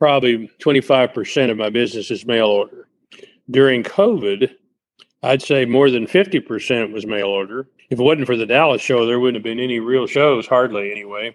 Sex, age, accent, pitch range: male, 40-59, American, 115-135 Hz